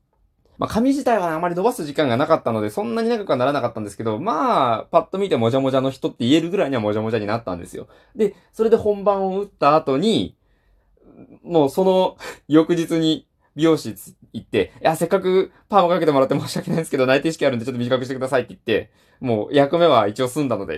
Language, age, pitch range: Japanese, 20-39, 115-190 Hz